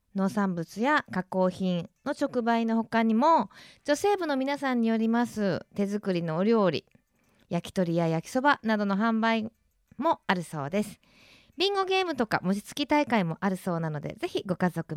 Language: Japanese